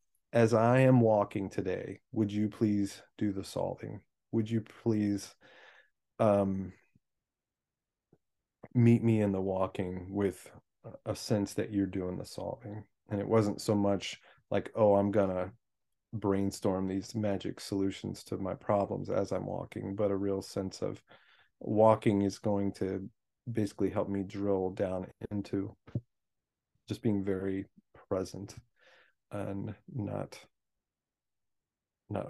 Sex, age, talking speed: male, 30-49, 130 wpm